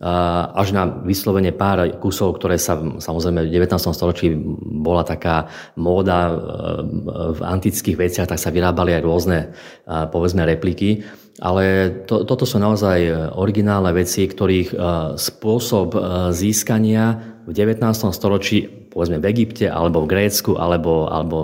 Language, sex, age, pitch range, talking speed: Slovak, male, 30-49, 85-105 Hz, 125 wpm